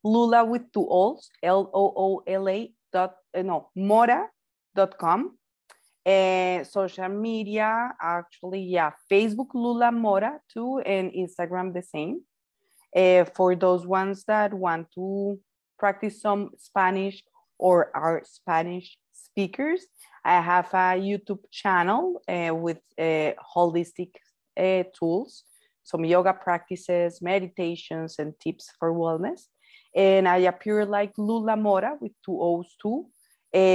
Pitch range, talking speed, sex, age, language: 175-210 Hz, 115 wpm, female, 30-49, English